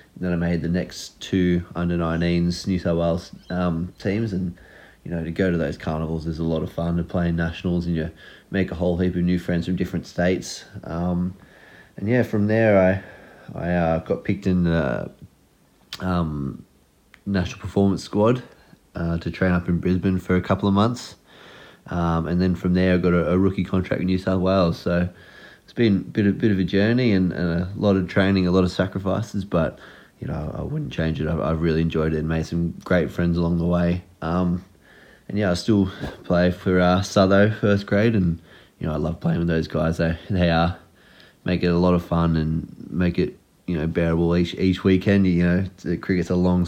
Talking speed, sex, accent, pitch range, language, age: 215 wpm, male, Australian, 85-95 Hz, English, 30-49